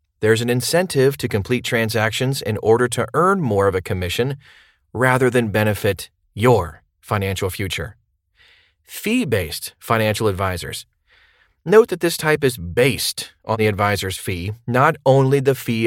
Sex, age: male, 30-49